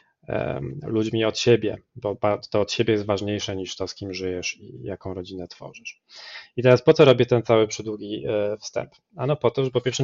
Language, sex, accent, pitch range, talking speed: Polish, male, native, 110-140 Hz, 195 wpm